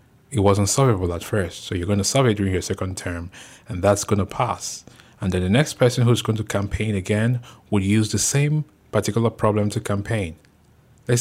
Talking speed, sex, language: 200 wpm, male, English